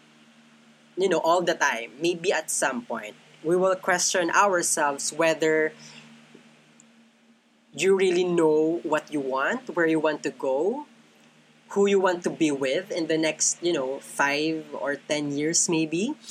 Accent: native